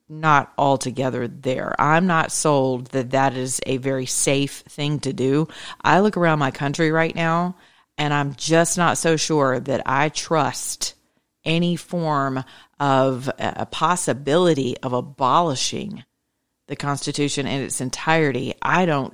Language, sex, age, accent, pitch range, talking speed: English, female, 40-59, American, 135-170 Hz, 140 wpm